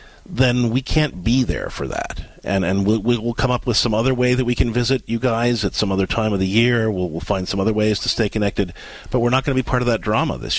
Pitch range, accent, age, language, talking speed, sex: 100-130 Hz, American, 40-59, English, 285 wpm, male